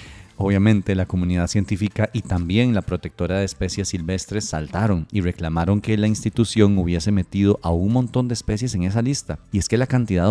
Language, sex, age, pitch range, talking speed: Spanish, male, 30-49, 90-115 Hz, 185 wpm